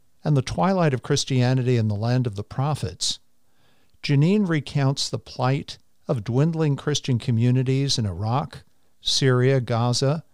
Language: English